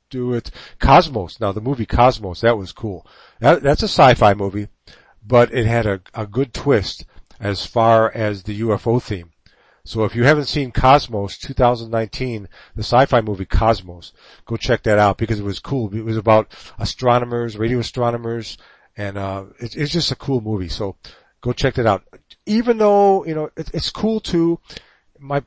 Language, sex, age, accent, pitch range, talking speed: English, male, 50-69, American, 105-135 Hz, 175 wpm